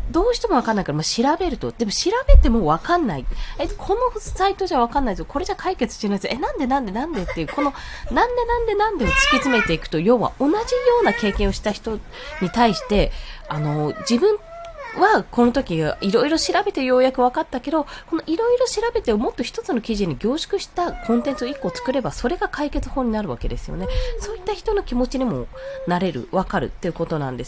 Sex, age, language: female, 20-39, Japanese